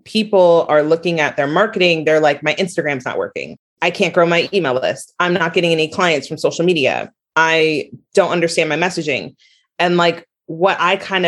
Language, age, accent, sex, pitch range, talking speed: English, 30-49, American, female, 150-185 Hz, 190 wpm